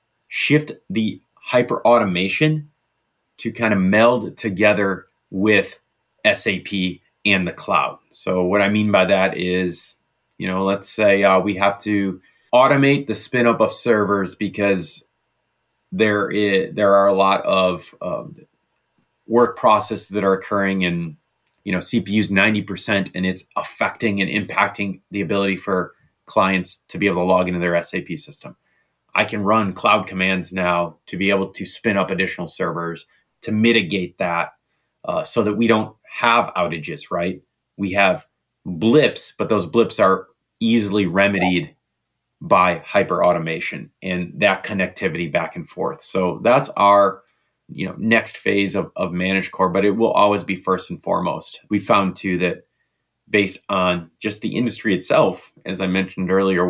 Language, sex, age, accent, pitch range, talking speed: English, male, 30-49, American, 95-105 Hz, 155 wpm